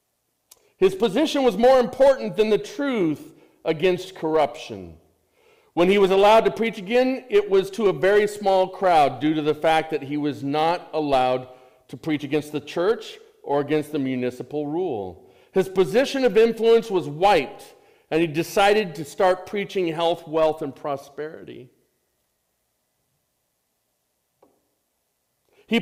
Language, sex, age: English, male, 50-69